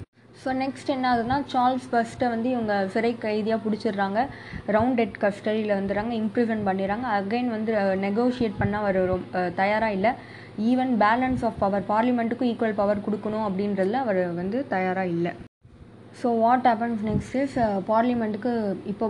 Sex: female